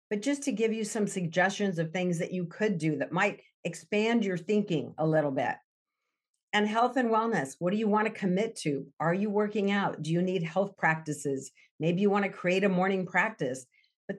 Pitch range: 155-200 Hz